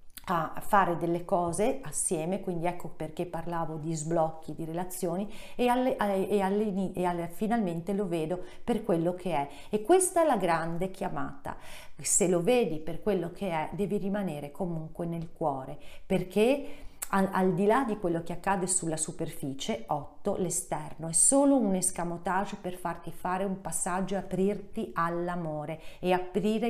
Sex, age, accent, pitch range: female, 40-59, native, 170-200 Hz